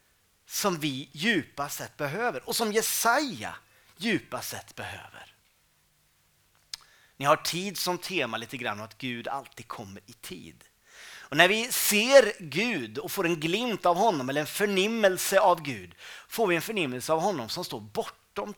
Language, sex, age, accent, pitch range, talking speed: Swedish, male, 30-49, native, 135-205 Hz, 155 wpm